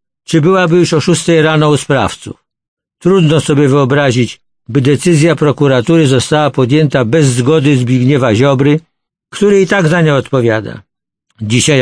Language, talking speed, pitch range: Polish, 135 wpm, 135-165 Hz